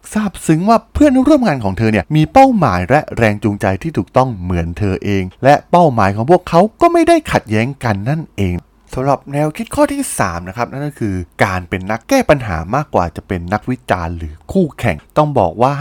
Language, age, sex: Thai, 20-39, male